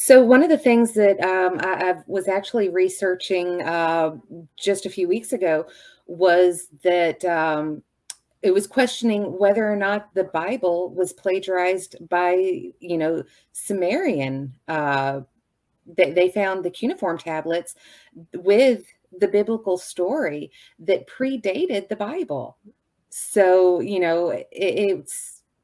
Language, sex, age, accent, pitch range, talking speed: English, female, 30-49, American, 165-200 Hz, 125 wpm